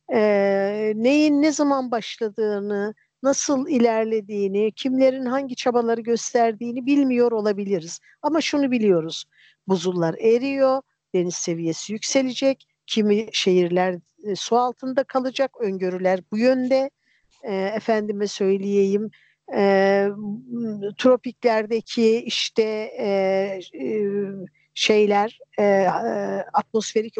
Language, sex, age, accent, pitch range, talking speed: Turkish, female, 50-69, native, 195-245 Hz, 95 wpm